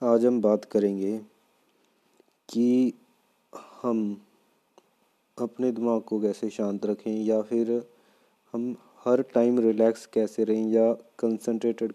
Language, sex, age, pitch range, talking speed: Hindi, male, 20-39, 105-115 Hz, 110 wpm